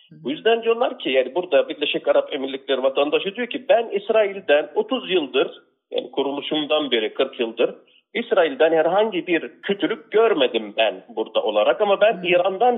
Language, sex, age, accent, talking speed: Turkish, male, 40-59, native, 150 wpm